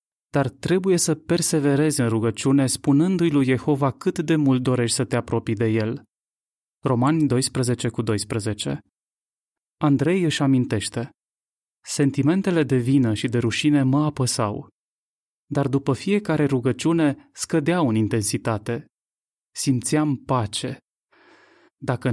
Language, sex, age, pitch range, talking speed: Romanian, male, 30-49, 125-150 Hz, 110 wpm